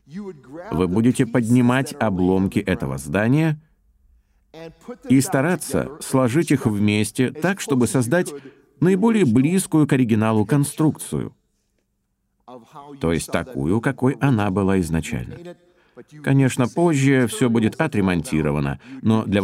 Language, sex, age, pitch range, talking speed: Russian, male, 50-69, 105-145 Hz, 100 wpm